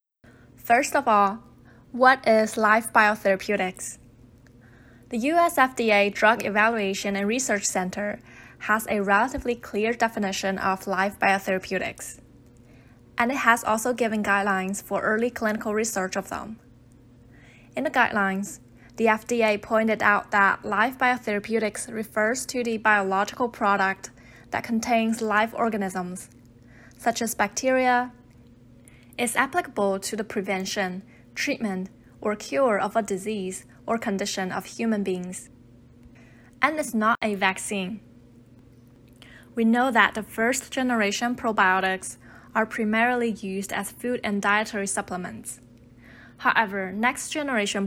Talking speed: 120 wpm